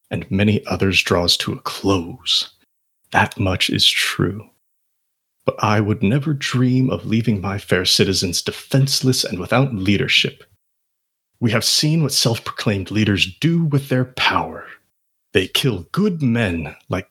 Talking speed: 140 wpm